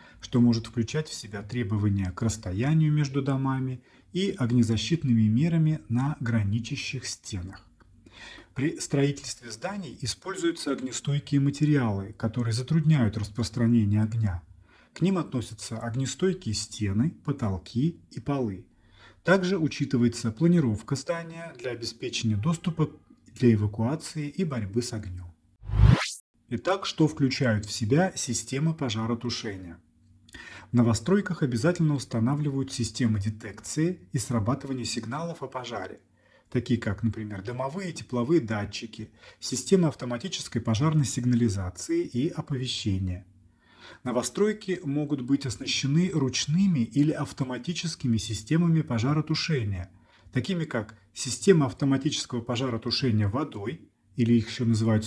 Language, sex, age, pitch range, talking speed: Russian, male, 30-49, 110-150 Hz, 105 wpm